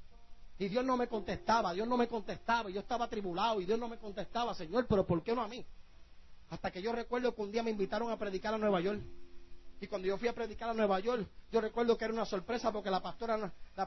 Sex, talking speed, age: male, 245 wpm, 30-49